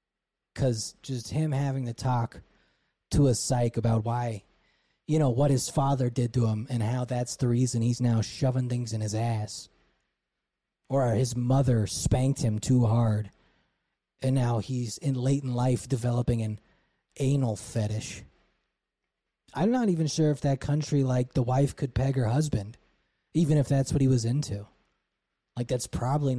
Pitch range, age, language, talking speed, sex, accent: 115-145 Hz, 20-39, English, 165 wpm, male, American